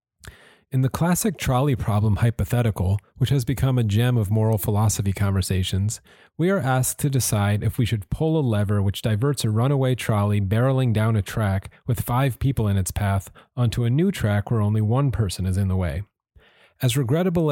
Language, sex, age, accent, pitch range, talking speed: English, male, 30-49, American, 105-130 Hz, 190 wpm